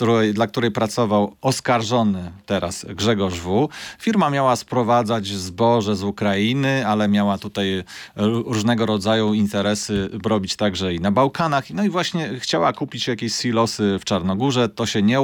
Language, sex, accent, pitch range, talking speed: Polish, male, native, 105-130 Hz, 140 wpm